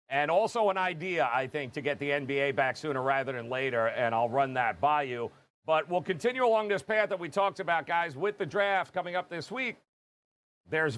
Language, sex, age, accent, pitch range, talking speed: English, male, 40-59, American, 140-185 Hz, 220 wpm